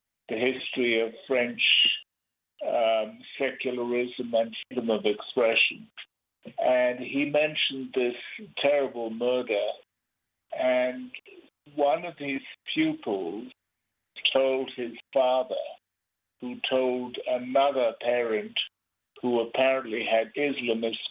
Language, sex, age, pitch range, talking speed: English, male, 60-79, 115-130 Hz, 90 wpm